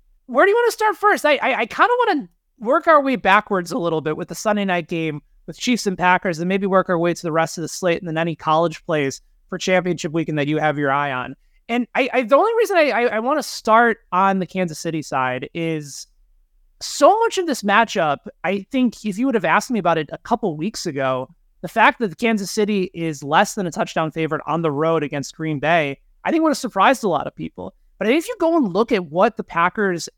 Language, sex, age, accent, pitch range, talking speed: English, male, 30-49, American, 165-235 Hz, 255 wpm